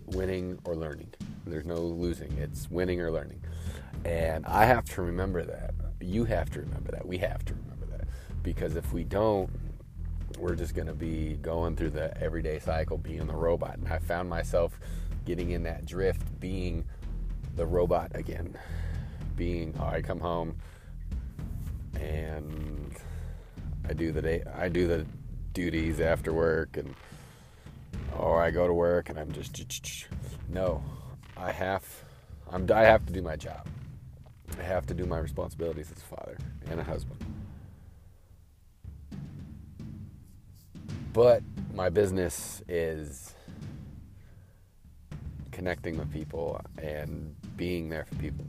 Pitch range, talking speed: 80-90 Hz, 140 wpm